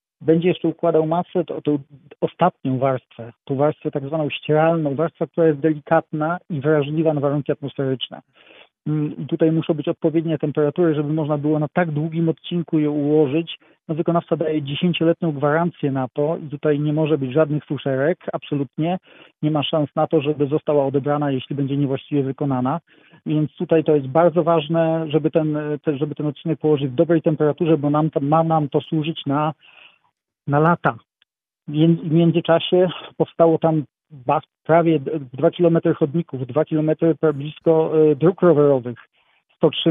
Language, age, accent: Polish, 40-59, native